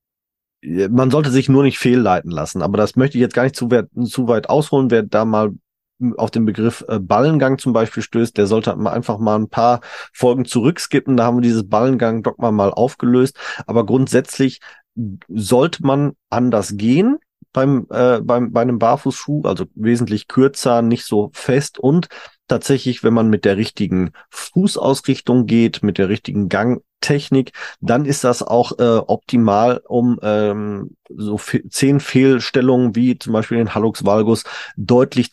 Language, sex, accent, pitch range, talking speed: German, male, German, 105-130 Hz, 165 wpm